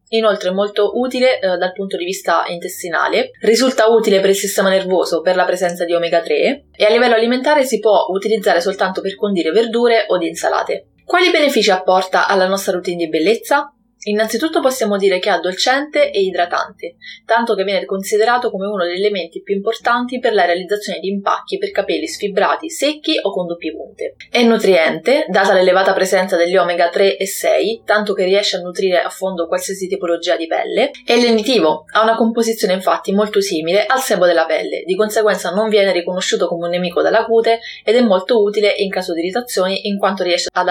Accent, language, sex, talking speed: native, Italian, female, 190 wpm